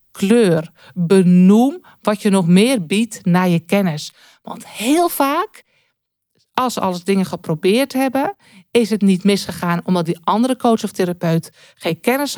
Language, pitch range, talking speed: Dutch, 175-210 Hz, 150 wpm